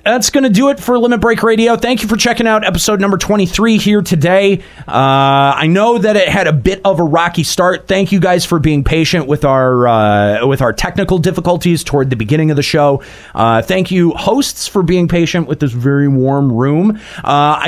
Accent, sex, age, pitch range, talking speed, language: American, male, 30-49, 140-195 Hz, 215 wpm, English